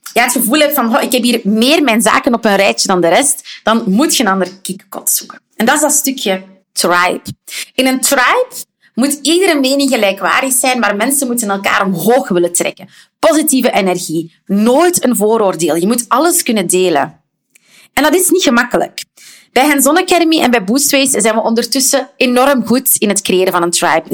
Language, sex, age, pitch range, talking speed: Dutch, female, 30-49, 195-265 Hz, 185 wpm